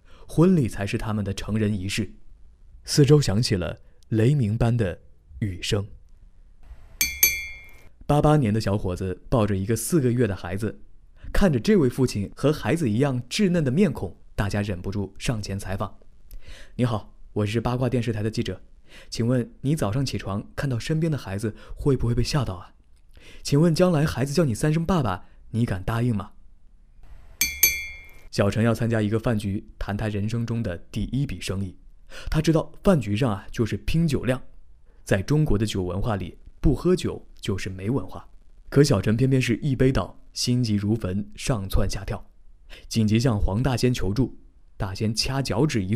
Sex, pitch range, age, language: male, 95-125 Hz, 20-39, Chinese